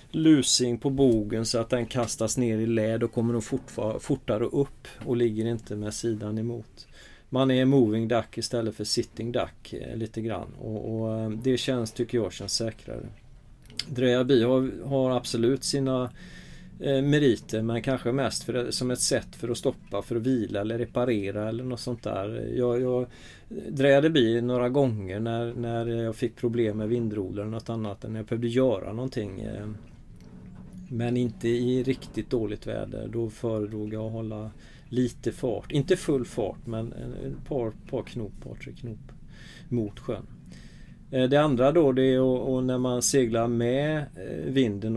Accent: native